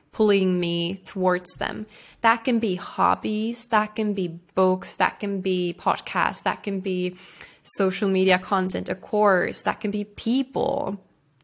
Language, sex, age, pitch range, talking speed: English, female, 20-39, 185-210 Hz, 145 wpm